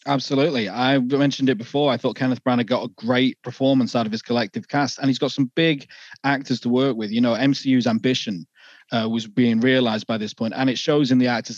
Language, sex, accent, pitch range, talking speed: English, male, British, 120-140 Hz, 235 wpm